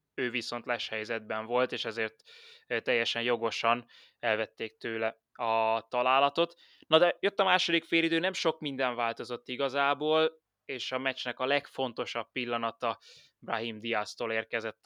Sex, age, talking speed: male, 20-39, 130 wpm